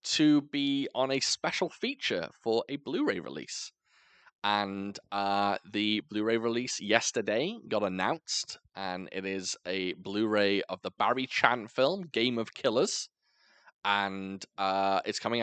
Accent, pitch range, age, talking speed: British, 100-120 Hz, 20-39, 135 wpm